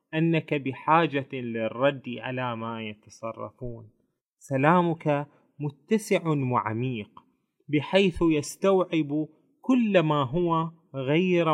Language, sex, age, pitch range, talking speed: Arabic, male, 20-39, 135-175 Hz, 80 wpm